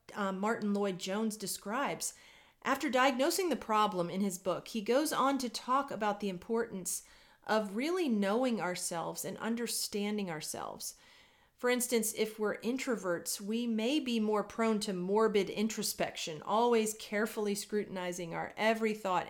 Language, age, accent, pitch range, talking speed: English, 40-59, American, 190-245 Hz, 140 wpm